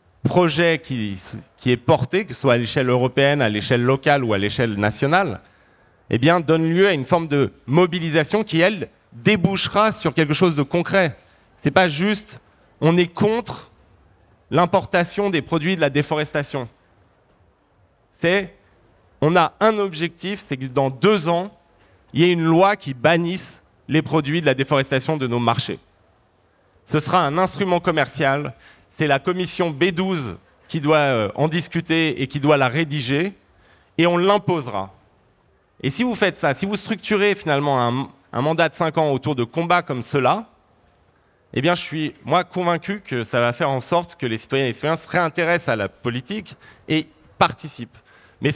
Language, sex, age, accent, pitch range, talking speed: French, male, 30-49, French, 120-175 Hz, 170 wpm